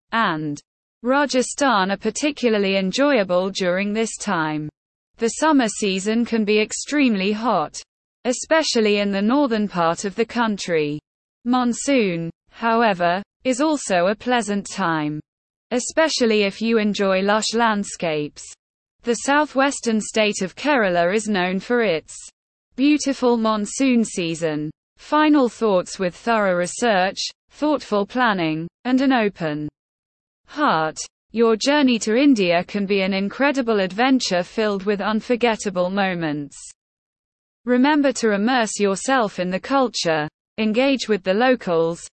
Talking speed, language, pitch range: 120 wpm, English, 185-245 Hz